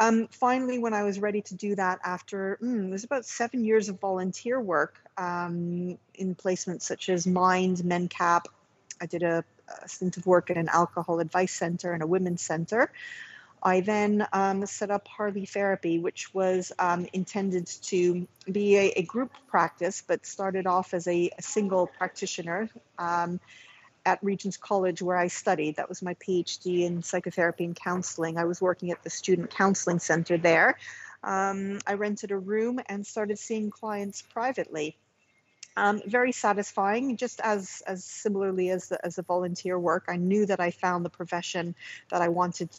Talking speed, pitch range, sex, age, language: 175 wpm, 175-205 Hz, female, 40-59, English